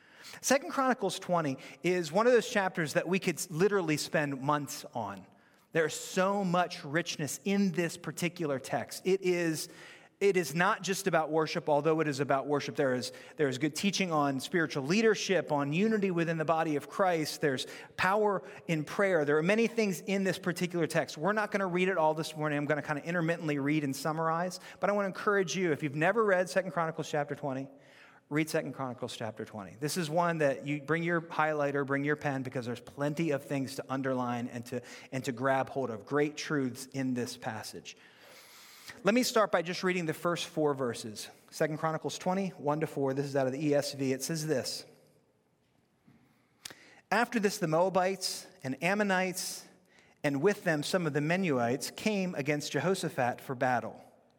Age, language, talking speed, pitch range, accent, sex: 30-49, English, 190 wpm, 140-185 Hz, American, male